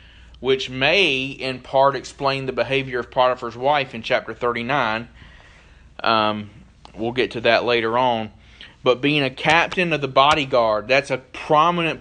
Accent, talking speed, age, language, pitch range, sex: American, 150 wpm, 30-49, English, 105-130 Hz, male